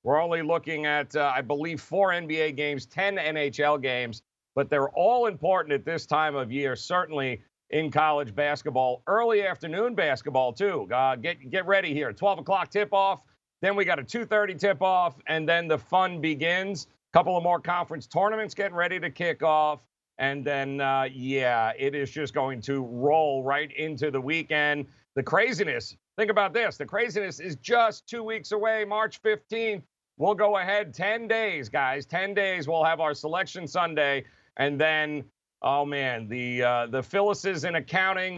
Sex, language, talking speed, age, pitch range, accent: male, English, 175 wpm, 40-59, 145-180 Hz, American